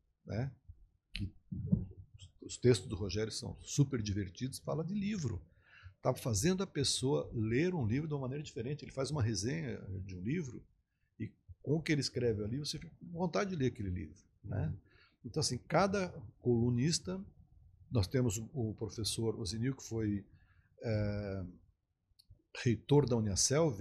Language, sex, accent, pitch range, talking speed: Portuguese, male, Brazilian, 100-140 Hz, 150 wpm